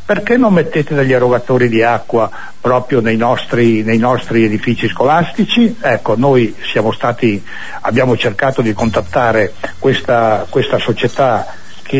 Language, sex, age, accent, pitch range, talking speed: Italian, male, 60-79, native, 120-145 Hz, 125 wpm